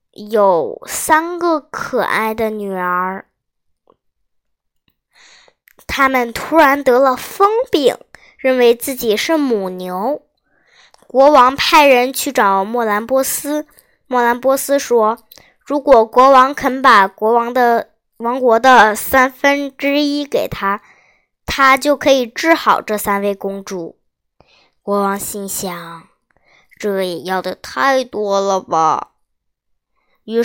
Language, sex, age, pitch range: Chinese, male, 10-29, 210-280 Hz